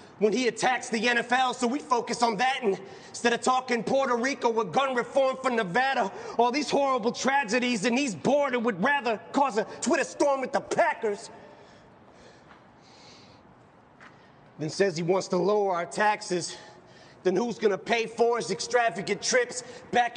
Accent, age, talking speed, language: American, 30-49, 160 wpm, English